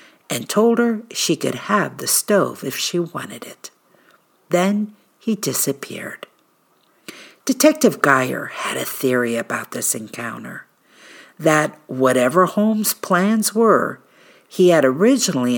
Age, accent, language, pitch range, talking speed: 50-69, American, English, 140-205 Hz, 120 wpm